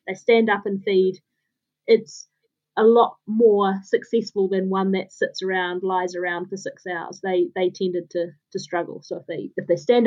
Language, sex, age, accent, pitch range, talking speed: English, female, 30-49, Australian, 190-240 Hz, 190 wpm